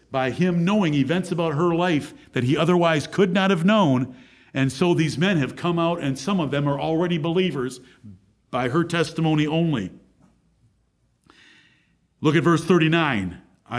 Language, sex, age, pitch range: English, male, 50-69, 155-235 Hz